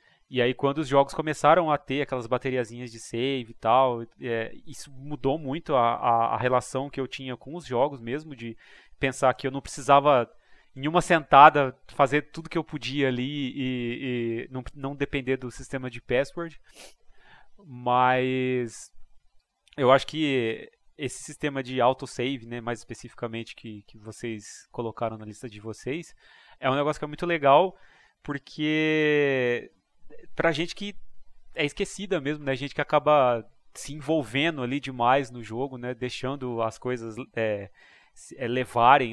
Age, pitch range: 20-39, 120-150 Hz